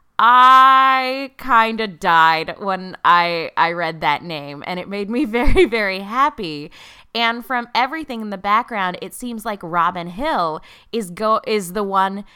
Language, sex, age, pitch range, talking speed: English, female, 20-39, 180-240 Hz, 160 wpm